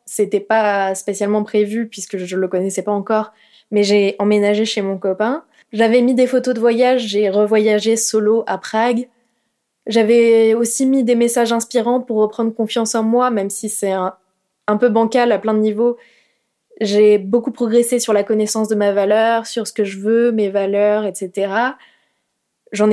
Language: French